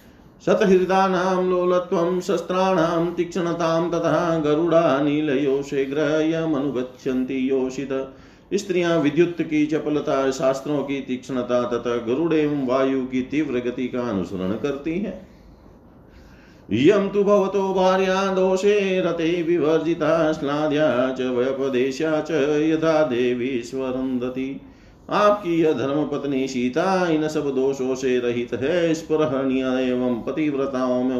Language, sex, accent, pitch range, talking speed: Hindi, male, native, 130-170 Hz, 80 wpm